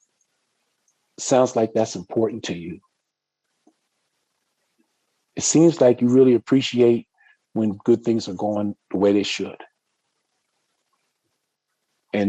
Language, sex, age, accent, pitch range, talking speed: English, male, 40-59, American, 105-125 Hz, 105 wpm